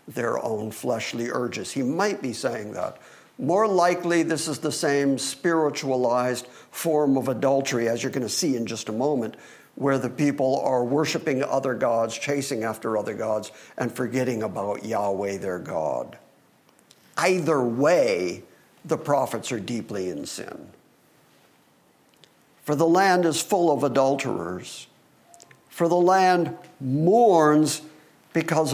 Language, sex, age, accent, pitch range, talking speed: English, male, 50-69, American, 130-165 Hz, 135 wpm